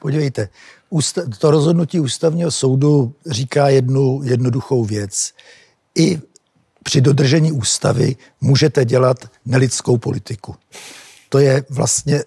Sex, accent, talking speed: male, native, 100 wpm